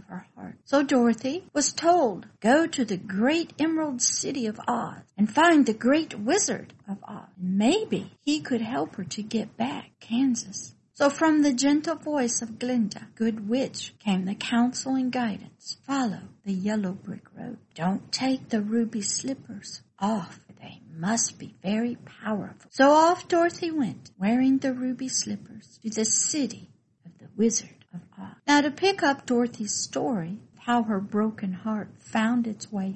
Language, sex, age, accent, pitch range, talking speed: English, female, 60-79, American, 205-270 Hz, 160 wpm